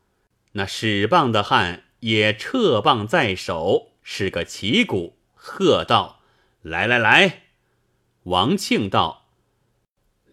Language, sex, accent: Chinese, male, native